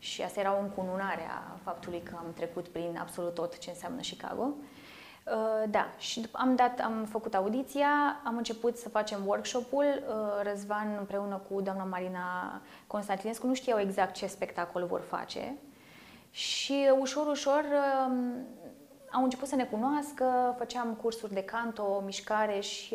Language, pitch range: Romanian, 195-255 Hz